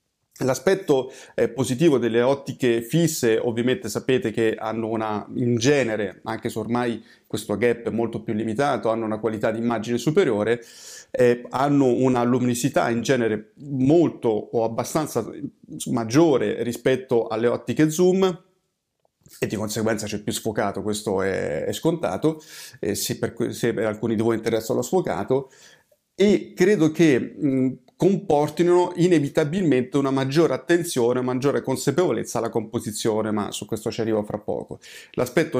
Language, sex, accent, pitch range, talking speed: Italian, male, native, 115-135 Hz, 140 wpm